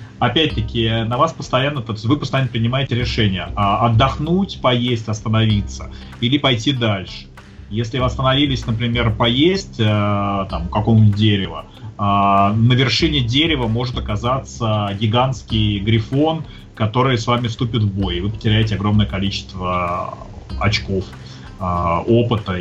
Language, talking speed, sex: Russian, 110 wpm, male